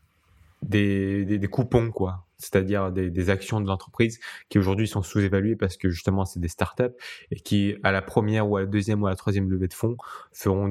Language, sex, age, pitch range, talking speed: French, male, 20-39, 95-115 Hz, 215 wpm